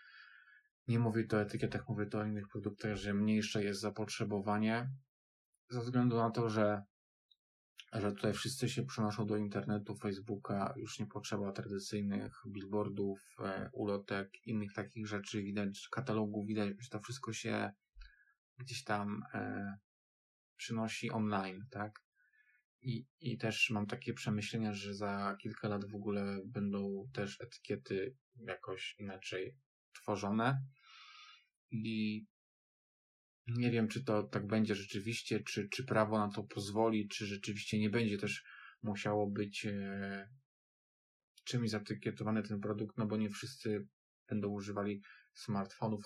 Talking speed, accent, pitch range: 130 wpm, native, 100-115 Hz